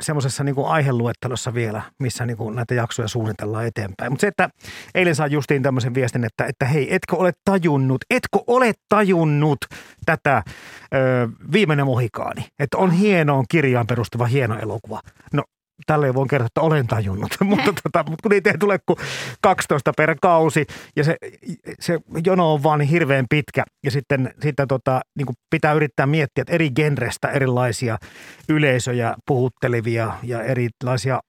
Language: Finnish